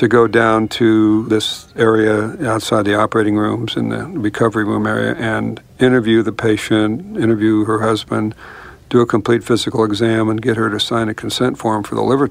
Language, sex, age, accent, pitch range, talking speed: English, male, 60-79, American, 105-115 Hz, 185 wpm